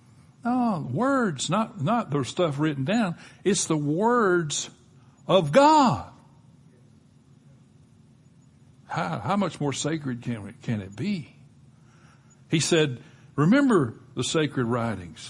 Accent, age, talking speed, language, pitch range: American, 60-79, 115 wpm, English, 120-180 Hz